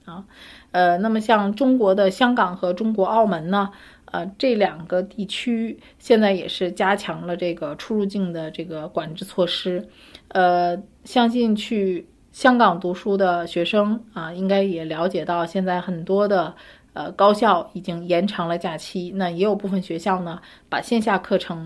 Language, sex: Chinese, female